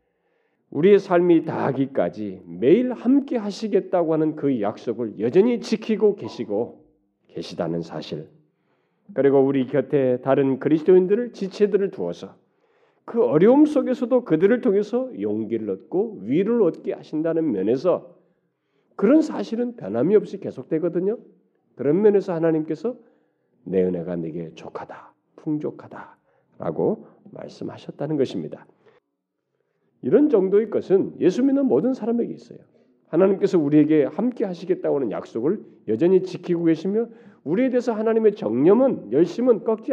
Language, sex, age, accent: Korean, male, 40-59, native